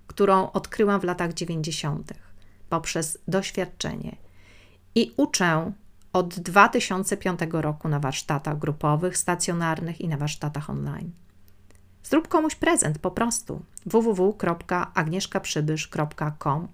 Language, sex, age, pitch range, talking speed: Polish, female, 40-59, 145-195 Hz, 95 wpm